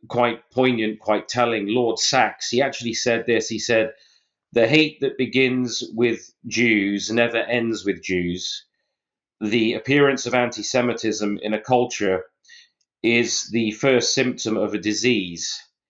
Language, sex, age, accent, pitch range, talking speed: English, male, 30-49, British, 100-120 Hz, 135 wpm